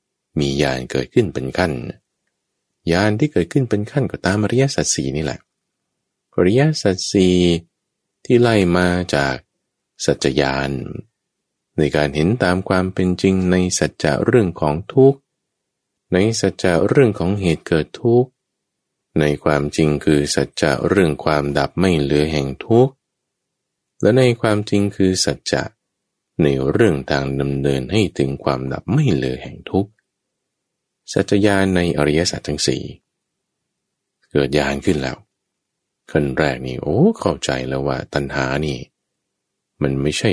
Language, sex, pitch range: English, male, 75-105 Hz